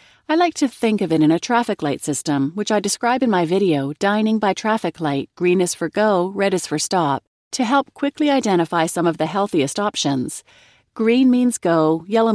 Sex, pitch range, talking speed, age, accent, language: female, 160-215 Hz, 205 wpm, 40-59, American, English